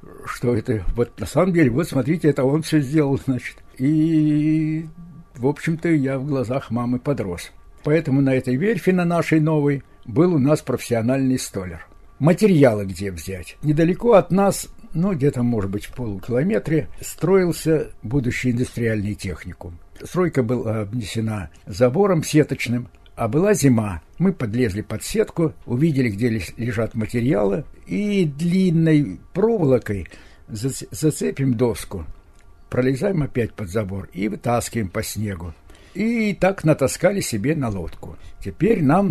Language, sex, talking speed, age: Russian, male, 130 wpm, 60-79